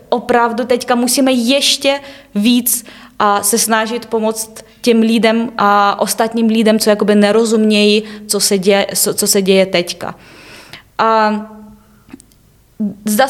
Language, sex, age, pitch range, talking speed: Czech, female, 20-39, 200-225 Hz, 100 wpm